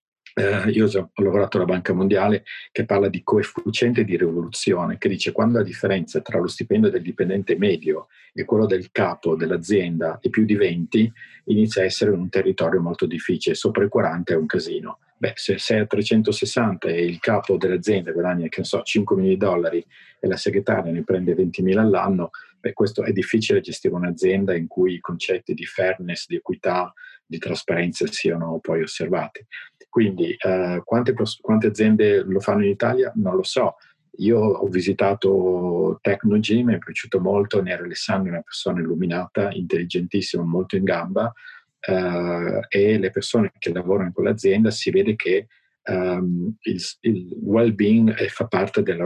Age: 40-59